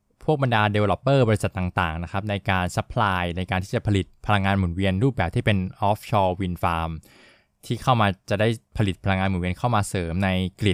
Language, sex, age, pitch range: Thai, male, 20-39, 95-115 Hz